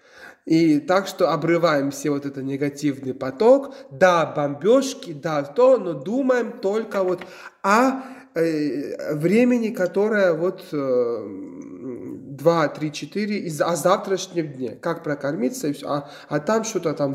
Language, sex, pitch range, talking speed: Russian, male, 130-175 Hz, 125 wpm